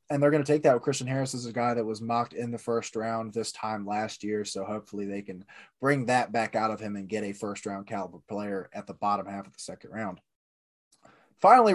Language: English